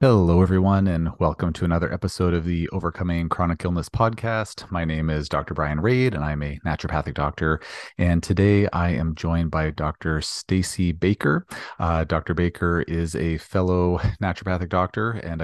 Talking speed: 165 wpm